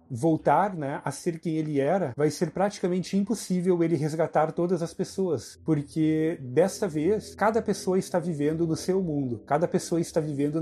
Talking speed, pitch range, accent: 170 wpm, 145-180 Hz, Brazilian